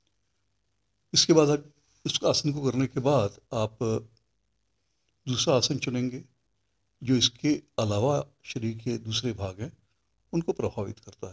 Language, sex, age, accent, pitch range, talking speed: Hindi, male, 60-79, native, 100-125 Hz, 120 wpm